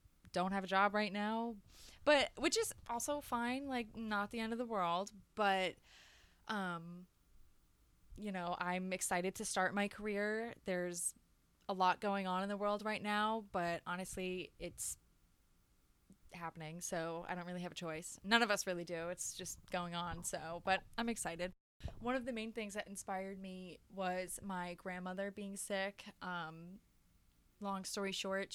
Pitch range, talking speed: 180-205 Hz, 165 wpm